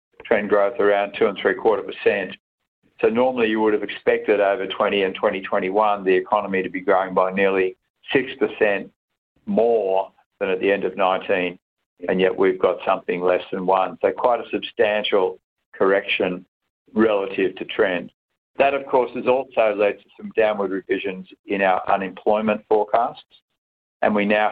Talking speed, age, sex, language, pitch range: 160 wpm, 60-79, male, English, 95-140 Hz